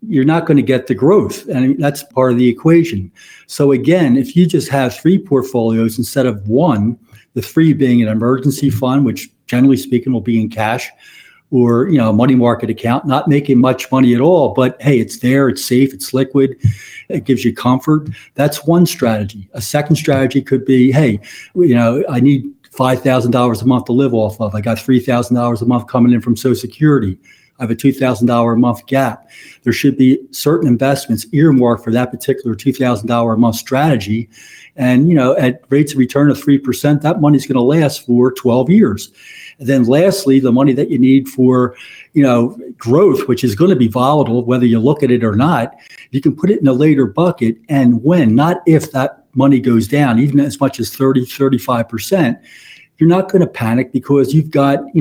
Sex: male